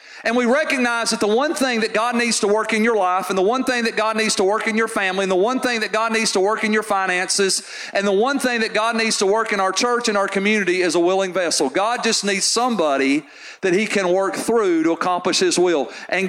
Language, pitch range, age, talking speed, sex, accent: English, 180-220 Hz, 40-59, 265 wpm, male, American